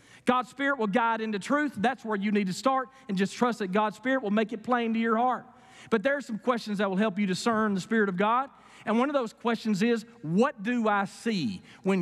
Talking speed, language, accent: 250 wpm, English, American